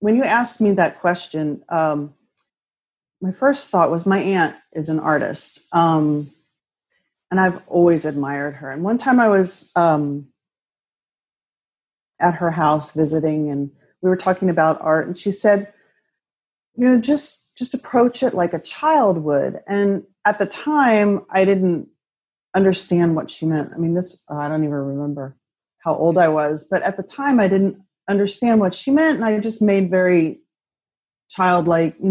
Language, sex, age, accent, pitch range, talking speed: English, female, 30-49, American, 160-205 Hz, 165 wpm